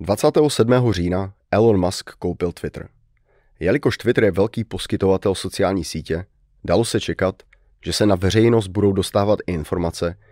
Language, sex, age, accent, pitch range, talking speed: Czech, male, 30-49, native, 90-110 Hz, 140 wpm